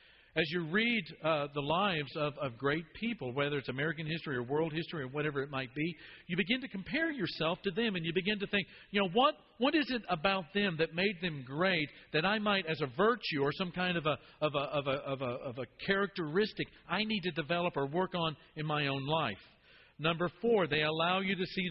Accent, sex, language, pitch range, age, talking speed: American, male, English, 140-185 Hz, 50-69, 210 wpm